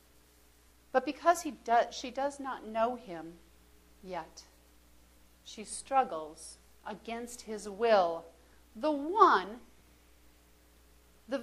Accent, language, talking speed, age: American, English, 95 wpm, 40-59